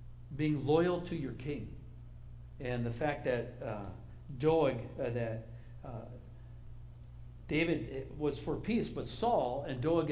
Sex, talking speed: male, 130 wpm